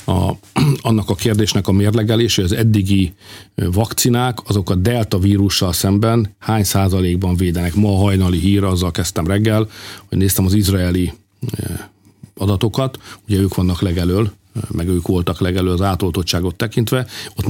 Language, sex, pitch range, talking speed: Hungarian, male, 90-110 Hz, 145 wpm